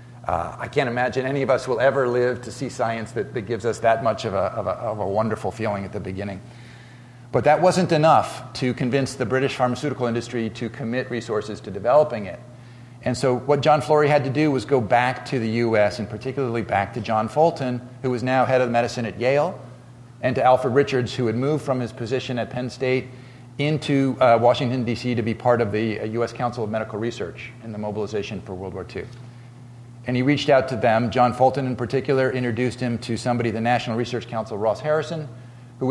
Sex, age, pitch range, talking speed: male, 40-59, 115-130 Hz, 215 wpm